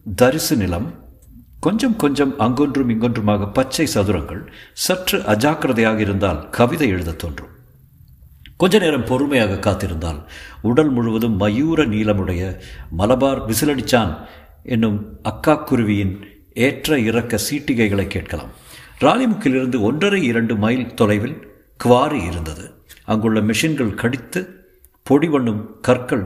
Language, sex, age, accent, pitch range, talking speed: Tamil, male, 50-69, native, 105-145 Hz, 95 wpm